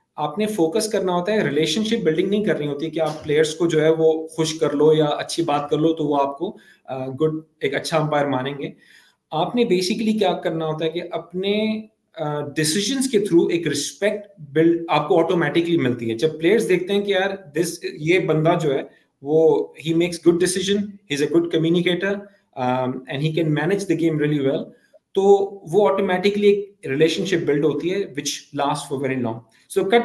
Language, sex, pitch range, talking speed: Urdu, male, 150-190 Hz, 170 wpm